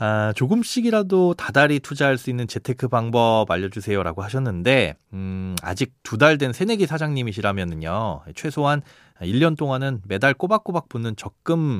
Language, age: Korean, 30-49